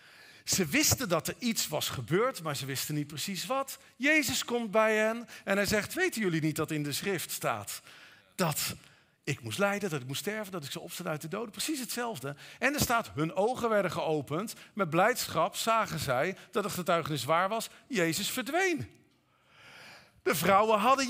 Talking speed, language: 190 wpm, Dutch